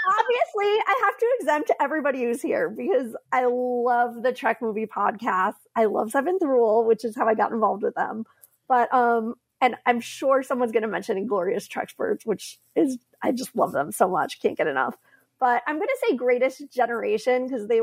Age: 30-49